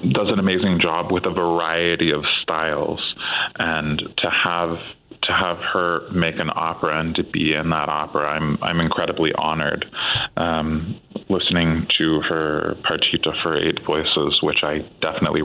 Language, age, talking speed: English, 20-39, 150 wpm